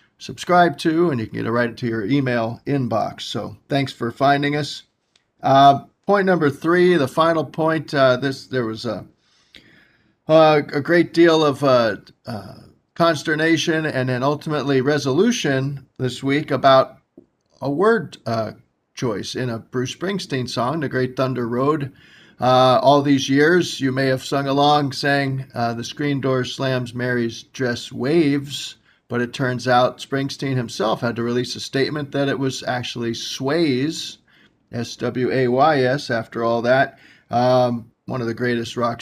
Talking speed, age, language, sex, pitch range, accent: 155 wpm, 50-69, English, male, 120-145 Hz, American